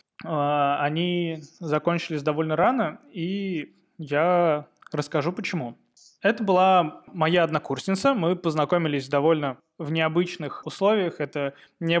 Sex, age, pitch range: male, 20-39, 145-175 Hz